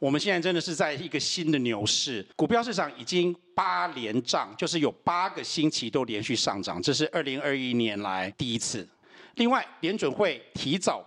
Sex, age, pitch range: male, 50-69, 135-215 Hz